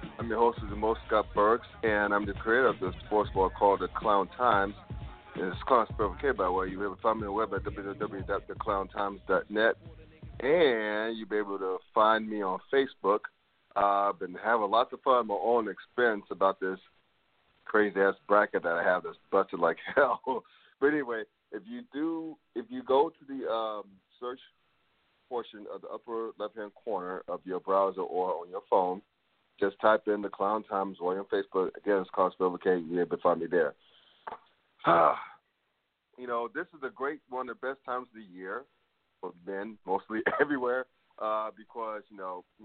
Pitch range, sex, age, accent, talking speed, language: 100-115 Hz, male, 40-59, American, 185 wpm, English